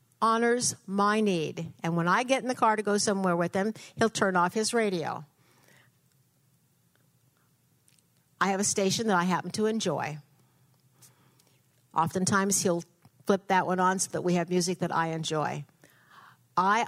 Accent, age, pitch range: American, 60-79, 175-260 Hz